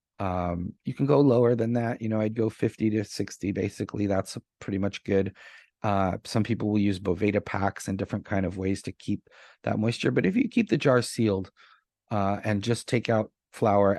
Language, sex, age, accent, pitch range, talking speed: English, male, 30-49, American, 95-110 Hz, 205 wpm